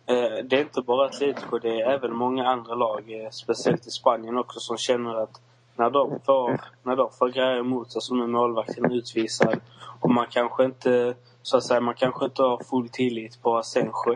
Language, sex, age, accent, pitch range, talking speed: Swedish, male, 20-39, native, 120-130 Hz, 205 wpm